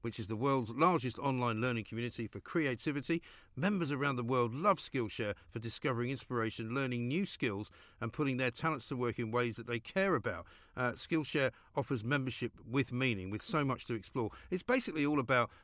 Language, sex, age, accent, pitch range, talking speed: English, male, 50-69, British, 115-155 Hz, 190 wpm